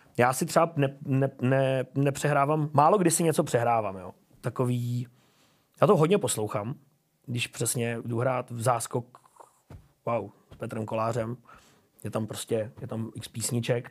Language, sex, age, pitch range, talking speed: Czech, male, 30-49, 120-155 Hz, 145 wpm